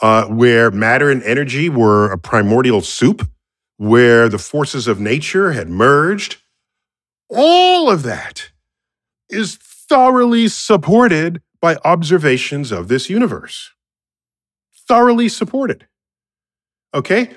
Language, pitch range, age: English, 125-200 Hz, 40-59